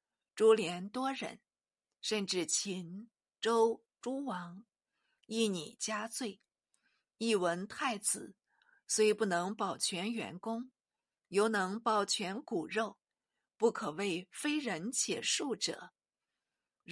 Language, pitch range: Chinese, 190-240 Hz